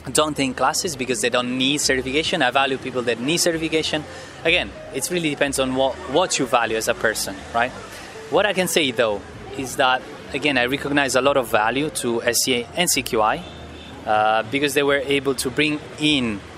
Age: 20-39